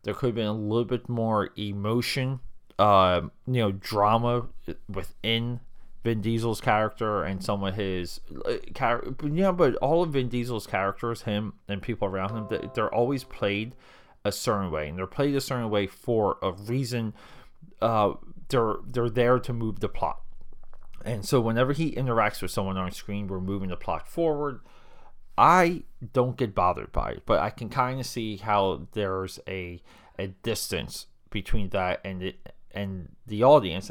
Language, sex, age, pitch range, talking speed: English, male, 30-49, 95-120 Hz, 170 wpm